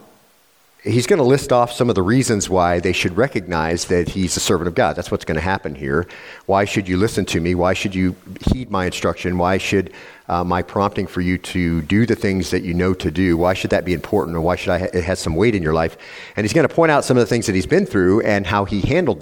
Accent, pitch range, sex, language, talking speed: American, 85-100 Hz, male, English, 265 wpm